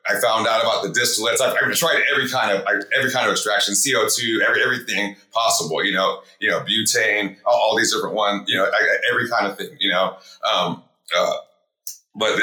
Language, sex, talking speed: English, male, 205 wpm